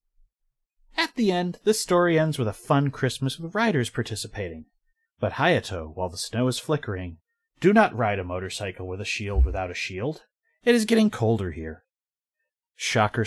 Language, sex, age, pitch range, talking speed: English, male, 30-49, 100-155 Hz, 165 wpm